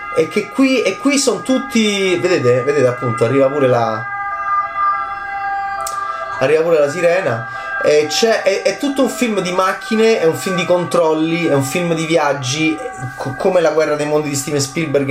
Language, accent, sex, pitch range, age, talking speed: Italian, native, male, 130-170 Hz, 30-49, 175 wpm